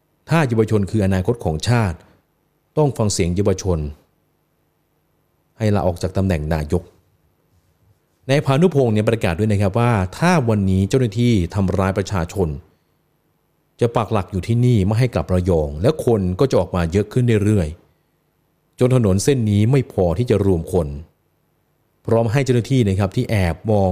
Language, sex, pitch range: Thai, male, 90-115 Hz